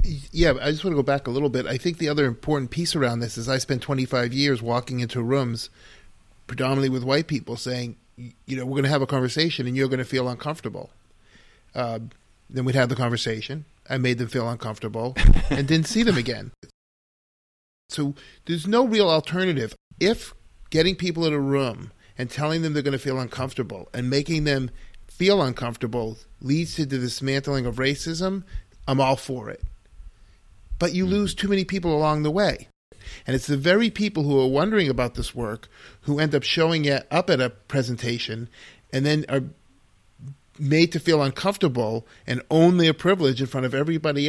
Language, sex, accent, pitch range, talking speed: English, male, American, 120-155 Hz, 185 wpm